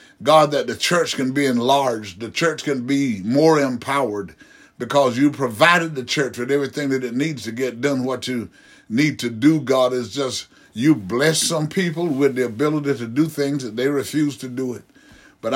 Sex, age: male, 60-79